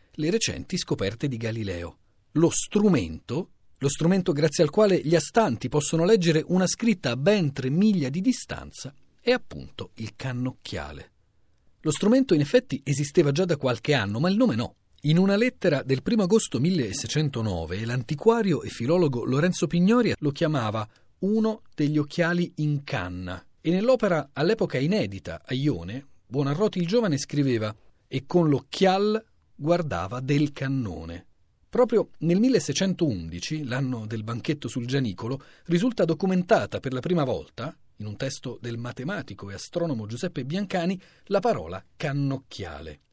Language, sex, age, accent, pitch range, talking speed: Italian, male, 40-59, native, 115-175 Hz, 140 wpm